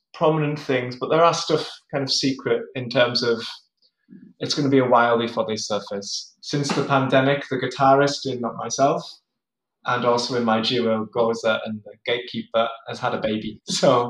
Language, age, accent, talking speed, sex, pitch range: English, 20-39, British, 185 wpm, male, 120-145 Hz